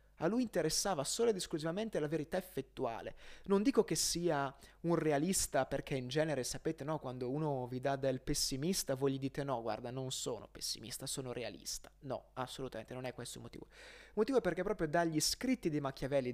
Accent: native